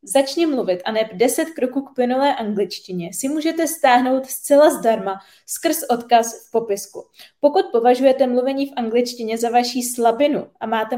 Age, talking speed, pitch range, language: 20-39, 155 wpm, 215-275 Hz, Czech